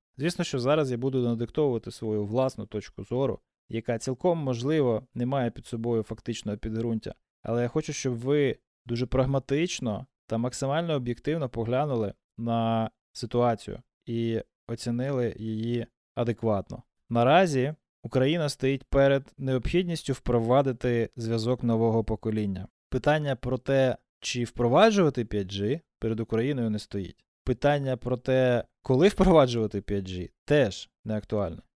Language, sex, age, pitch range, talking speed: Ukrainian, male, 20-39, 115-135 Hz, 120 wpm